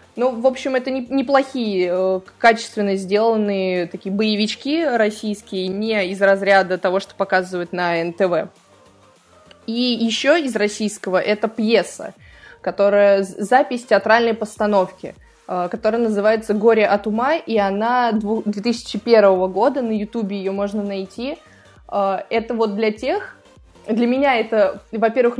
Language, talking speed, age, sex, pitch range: Russian, 120 wpm, 20-39, female, 195-235 Hz